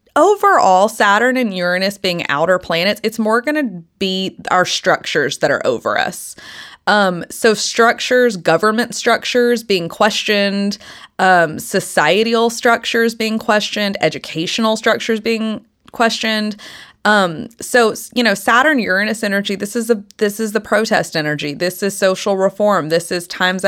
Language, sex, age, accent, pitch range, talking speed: English, female, 20-39, American, 170-225 Hz, 135 wpm